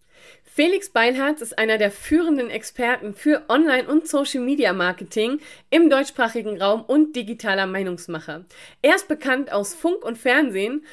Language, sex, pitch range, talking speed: German, female, 210-280 Hz, 130 wpm